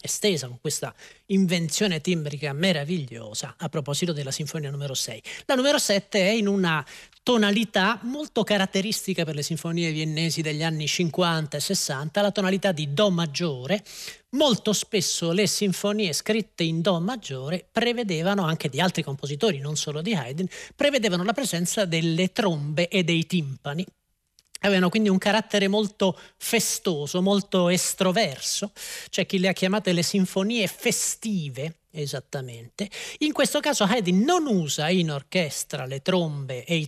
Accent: native